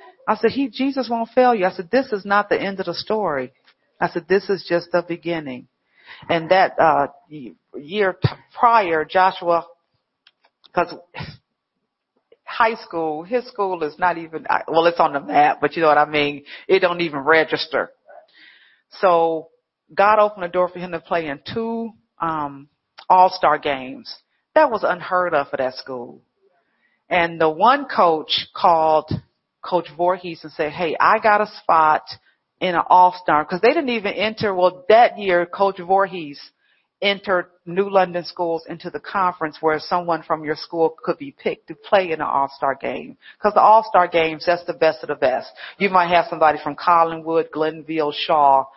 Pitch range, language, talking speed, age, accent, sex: 155-190 Hz, English, 170 wpm, 40-59, American, female